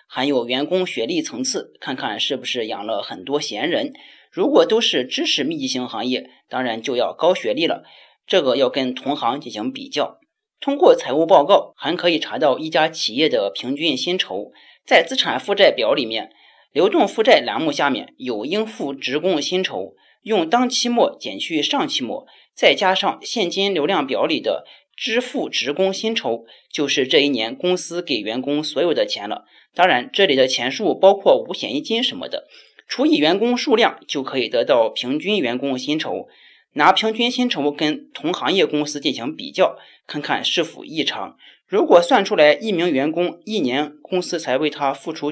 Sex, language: male, Chinese